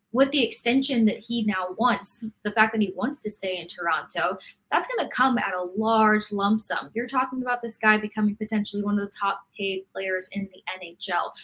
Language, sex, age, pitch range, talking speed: English, female, 20-39, 190-235 Hz, 215 wpm